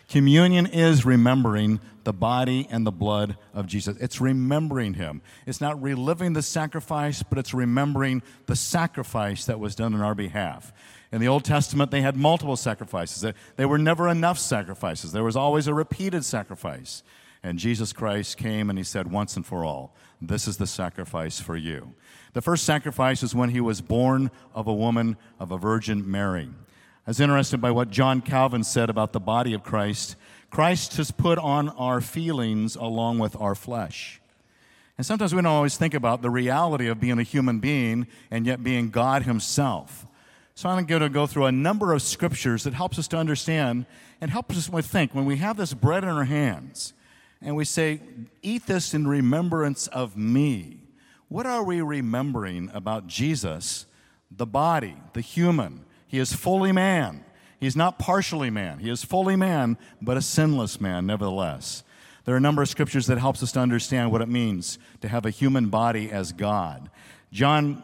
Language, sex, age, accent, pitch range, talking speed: English, male, 50-69, American, 110-145 Hz, 185 wpm